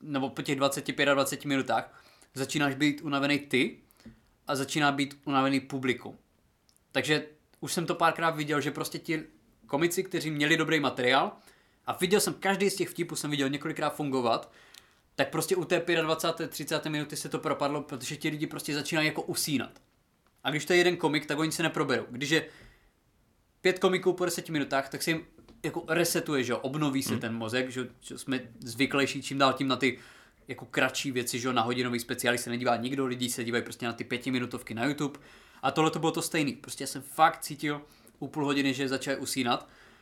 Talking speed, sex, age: 195 wpm, male, 20-39